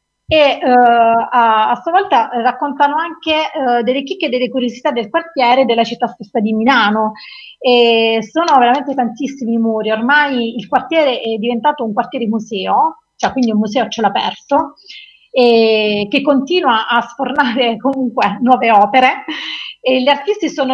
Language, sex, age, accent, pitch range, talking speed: Italian, female, 30-49, native, 230-280 Hz, 150 wpm